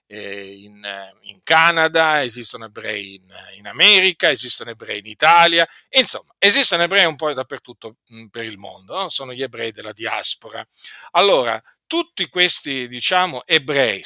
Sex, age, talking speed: male, 50-69, 120 wpm